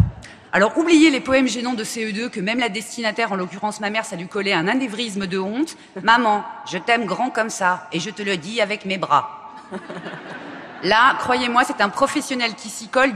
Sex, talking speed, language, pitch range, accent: female, 200 wpm, French, 210-290 Hz, French